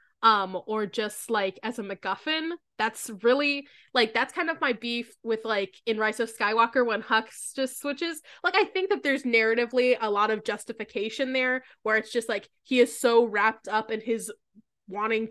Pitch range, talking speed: 210-245 Hz, 190 wpm